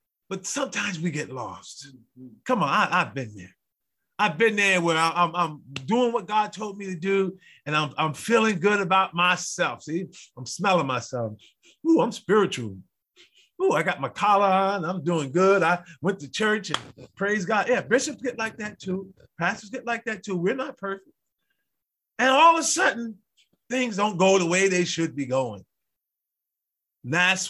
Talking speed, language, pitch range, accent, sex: 180 wpm, English, 160-230 Hz, American, male